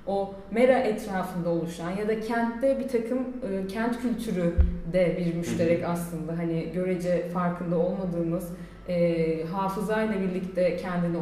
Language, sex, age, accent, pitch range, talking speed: Turkish, female, 30-49, native, 180-255 Hz, 130 wpm